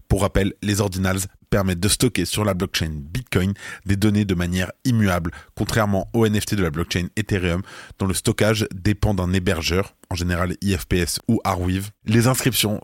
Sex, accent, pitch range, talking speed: male, French, 95-110 Hz, 170 wpm